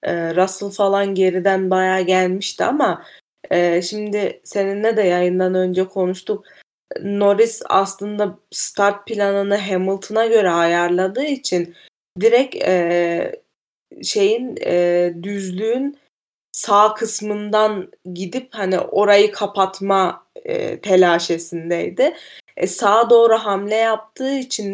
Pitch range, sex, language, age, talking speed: 185-230 Hz, female, Turkish, 20-39, 95 wpm